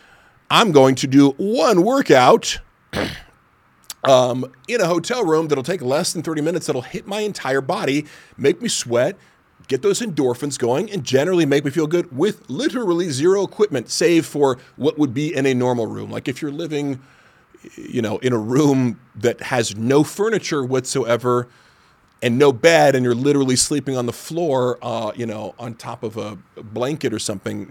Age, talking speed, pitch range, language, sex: 40-59, 180 wpm, 120-160 Hz, English, male